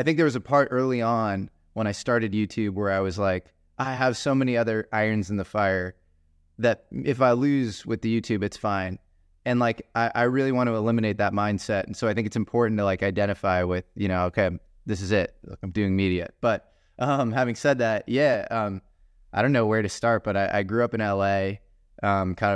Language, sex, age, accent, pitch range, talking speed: Danish, male, 20-39, American, 95-110 Hz, 225 wpm